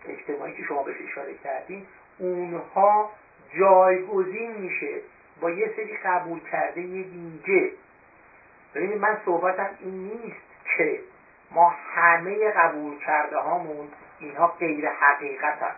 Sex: male